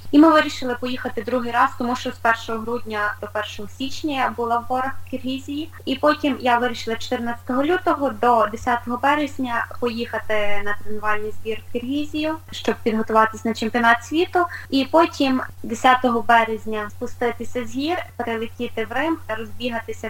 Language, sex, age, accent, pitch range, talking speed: Ukrainian, female, 20-39, native, 210-250 Hz, 150 wpm